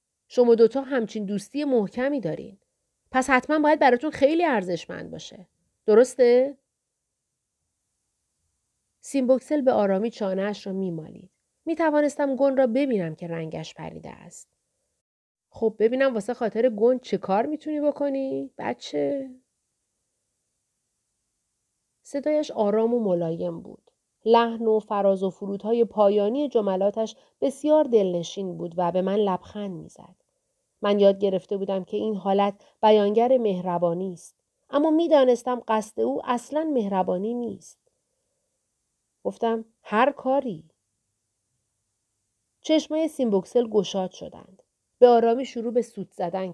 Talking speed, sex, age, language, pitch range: 115 wpm, female, 40-59, Persian, 180-260 Hz